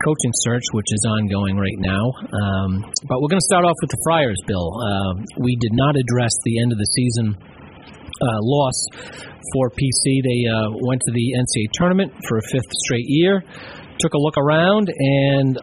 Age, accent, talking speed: 40-59, American, 190 wpm